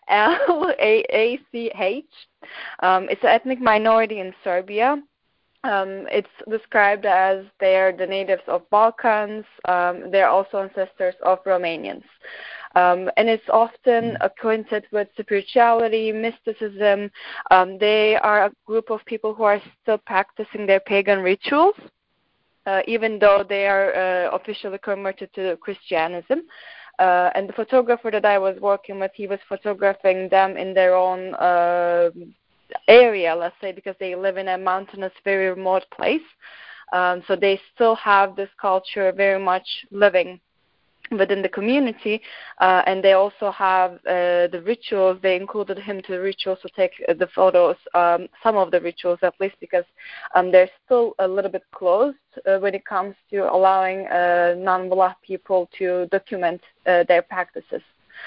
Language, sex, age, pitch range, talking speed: English, female, 20-39, 185-215 Hz, 150 wpm